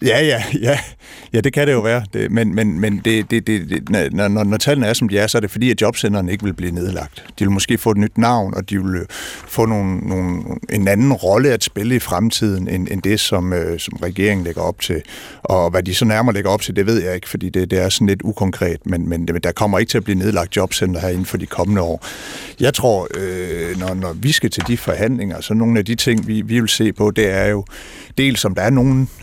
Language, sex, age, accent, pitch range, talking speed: Danish, male, 60-79, native, 90-110 Hz, 260 wpm